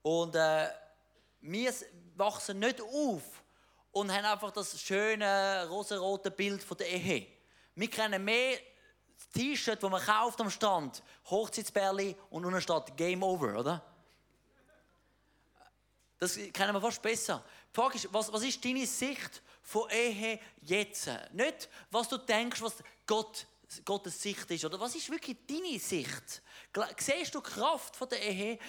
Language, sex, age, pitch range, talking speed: German, male, 30-49, 180-235 Hz, 140 wpm